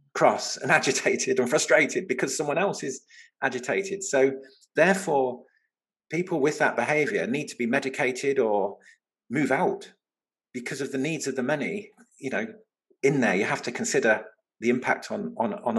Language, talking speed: English, 165 wpm